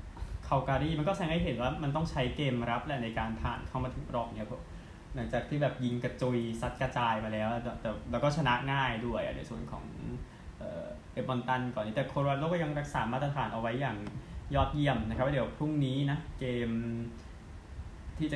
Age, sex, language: 20-39, male, Thai